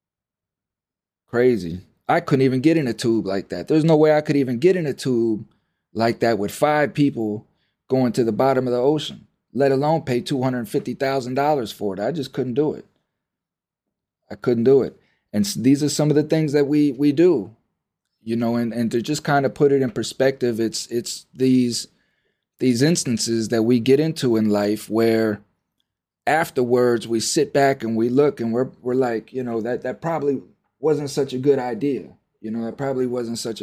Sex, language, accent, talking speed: male, English, American, 195 wpm